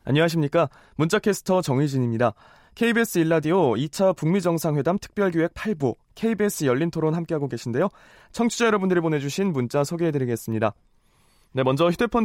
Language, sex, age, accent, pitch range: Korean, male, 20-39, native, 135-190 Hz